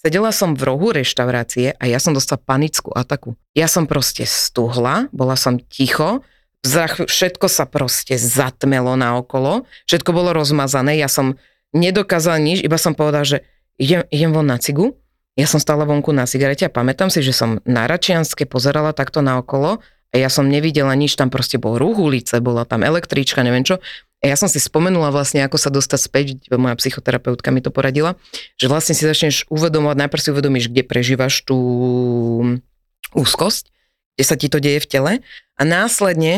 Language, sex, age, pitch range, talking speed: Slovak, female, 30-49, 135-160 Hz, 175 wpm